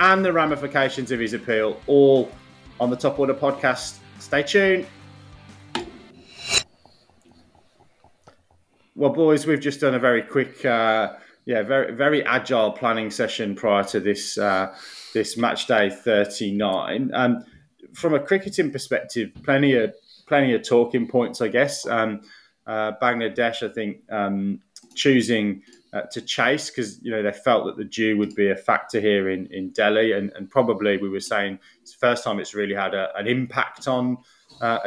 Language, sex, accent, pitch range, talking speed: English, male, British, 105-135 Hz, 165 wpm